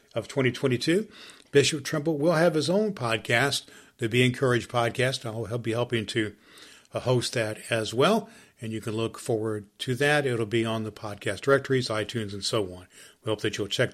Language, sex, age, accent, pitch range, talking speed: English, male, 50-69, American, 115-145 Hz, 185 wpm